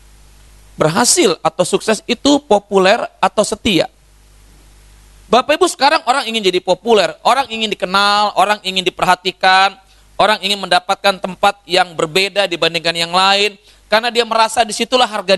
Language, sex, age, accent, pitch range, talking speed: Indonesian, male, 30-49, native, 200-250 Hz, 135 wpm